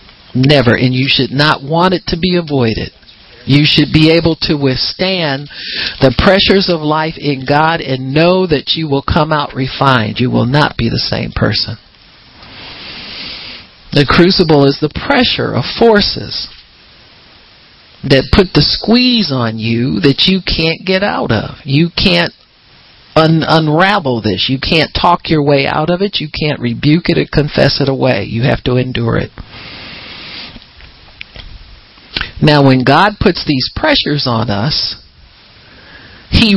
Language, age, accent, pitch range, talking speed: English, 50-69, American, 125-165 Hz, 150 wpm